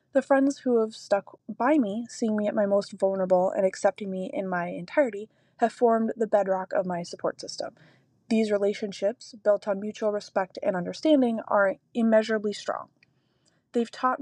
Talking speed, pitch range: 170 wpm, 195-235 Hz